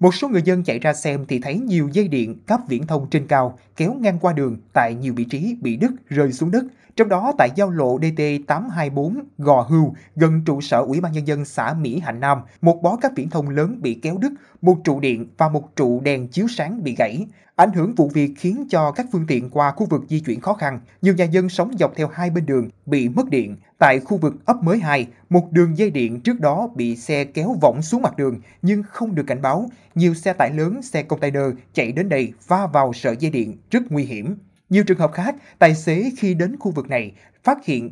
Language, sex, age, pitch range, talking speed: Vietnamese, male, 20-39, 135-190 Hz, 240 wpm